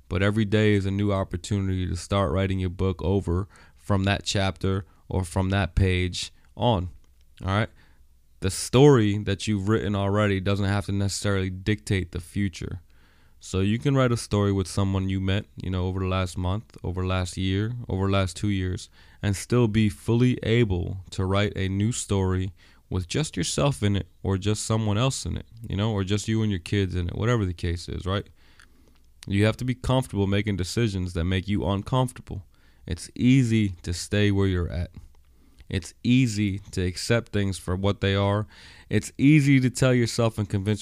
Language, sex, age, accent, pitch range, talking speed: English, male, 20-39, American, 90-105 Hz, 195 wpm